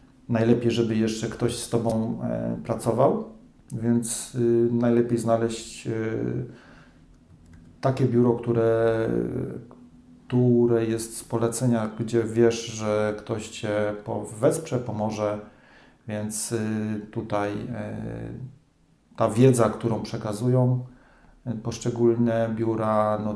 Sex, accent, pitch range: male, native, 105-120 Hz